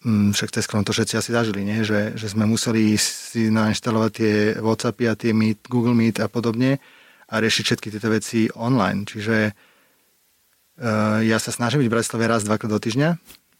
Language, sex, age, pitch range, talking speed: Slovak, male, 30-49, 110-120 Hz, 170 wpm